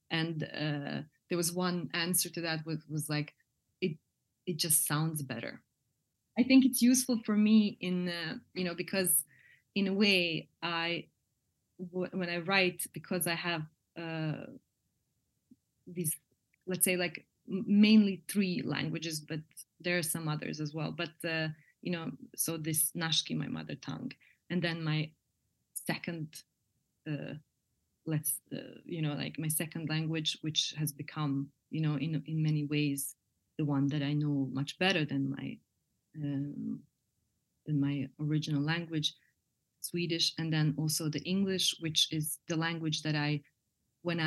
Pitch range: 150-175 Hz